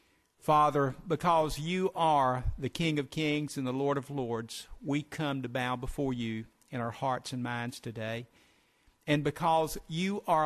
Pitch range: 120-150 Hz